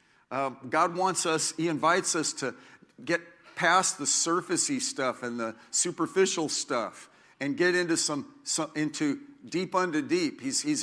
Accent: American